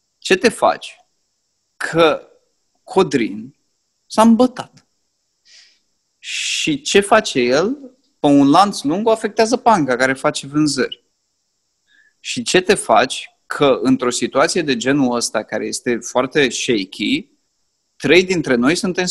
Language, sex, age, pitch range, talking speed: Romanian, male, 30-49, 135-215 Hz, 120 wpm